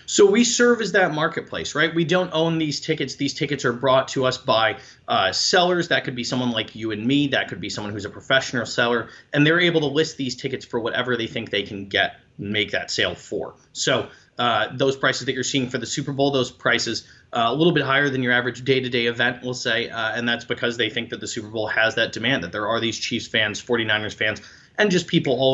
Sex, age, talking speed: male, 30-49, 245 wpm